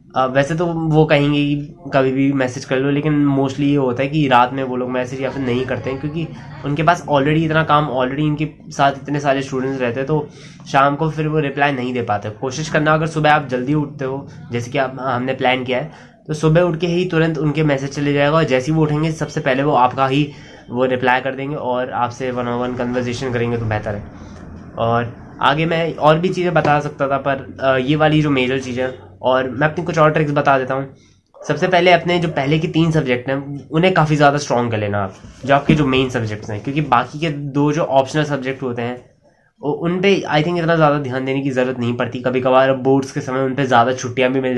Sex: male